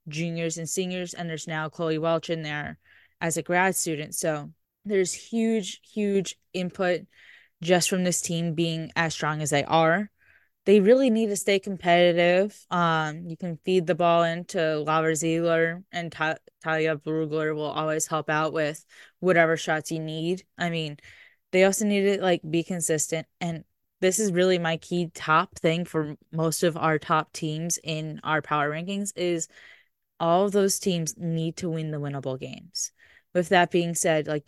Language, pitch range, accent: English, 160-180 Hz, American